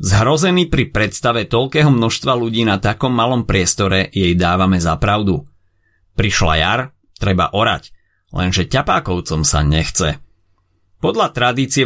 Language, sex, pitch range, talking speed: Slovak, male, 95-130 Hz, 120 wpm